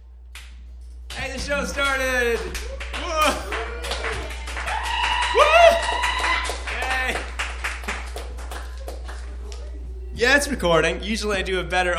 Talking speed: 70 wpm